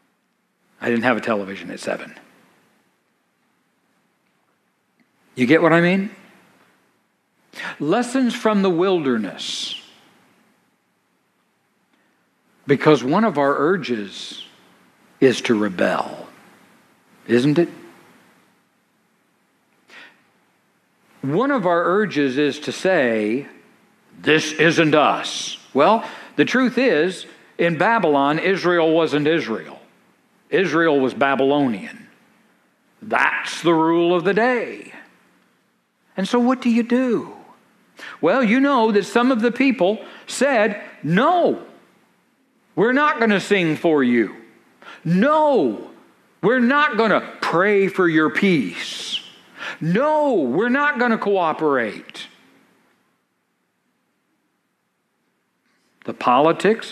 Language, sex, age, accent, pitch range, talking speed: English, male, 60-79, American, 150-230 Hz, 100 wpm